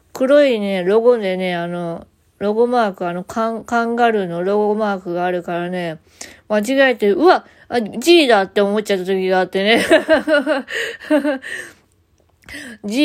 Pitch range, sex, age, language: 175-235 Hz, female, 20-39, Japanese